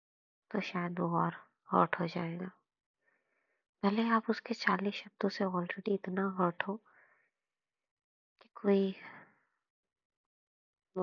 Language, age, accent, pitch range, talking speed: Hindi, 20-39, native, 175-205 Hz, 110 wpm